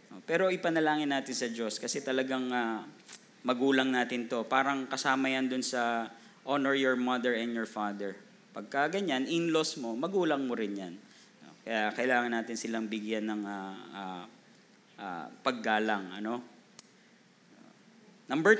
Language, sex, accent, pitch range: Filipino, male, native, 120-160 Hz